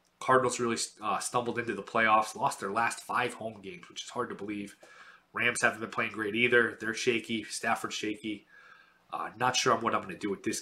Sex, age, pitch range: male, 20-39, 110-130 Hz